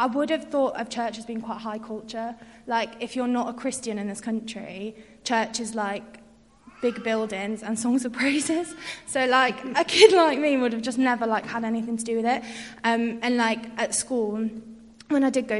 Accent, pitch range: British, 220-245 Hz